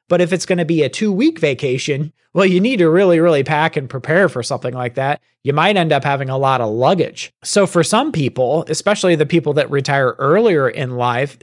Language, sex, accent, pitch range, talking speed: English, male, American, 145-170 Hz, 225 wpm